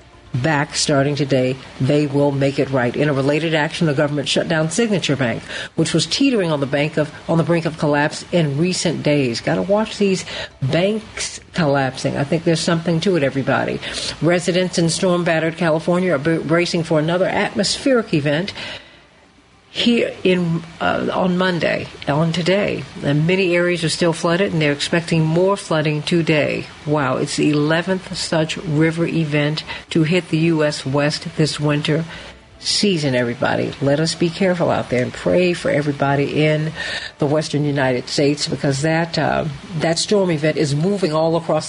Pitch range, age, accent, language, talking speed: 145-175 Hz, 50-69, American, English, 165 wpm